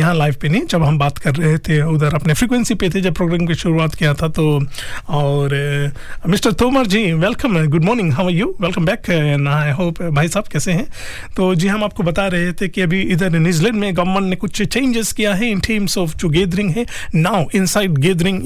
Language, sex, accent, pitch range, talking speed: Hindi, male, native, 155-195 Hz, 215 wpm